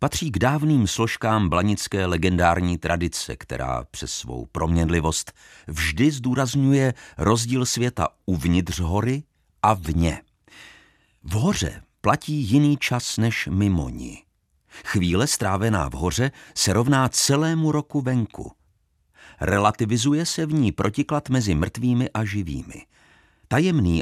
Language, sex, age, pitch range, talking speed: Czech, male, 50-69, 85-130 Hz, 115 wpm